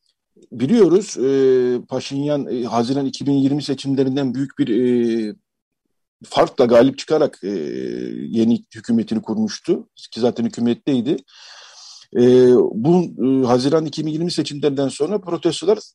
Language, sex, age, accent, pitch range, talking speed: Turkish, male, 50-69, native, 120-155 Hz, 105 wpm